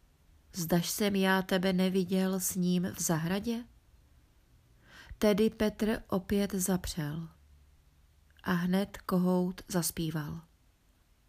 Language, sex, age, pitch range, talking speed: Czech, female, 30-49, 180-205 Hz, 90 wpm